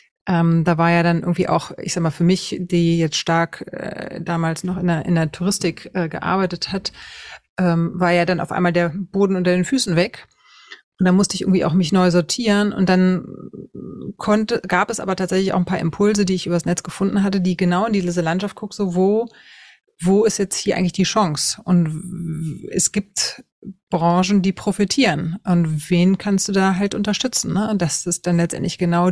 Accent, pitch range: German, 165-190 Hz